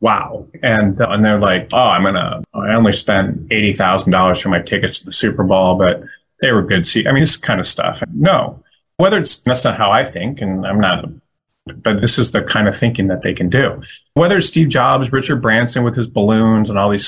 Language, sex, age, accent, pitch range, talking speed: English, male, 30-49, American, 105-145 Hz, 230 wpm